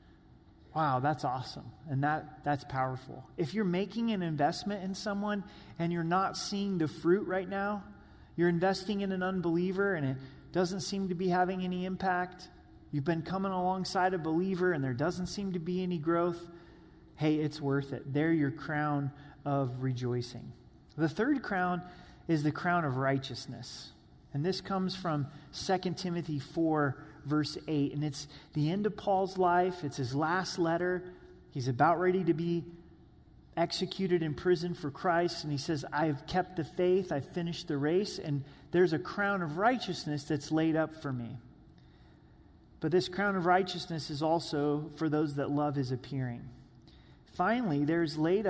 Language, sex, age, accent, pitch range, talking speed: English, male, 30-49, American, 145-180 Hz, 170 wpm